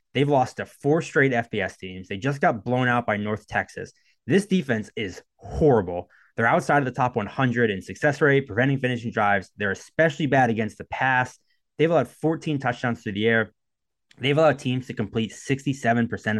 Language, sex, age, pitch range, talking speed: English, male, 20-39, 100-130 Hz, 185 wpm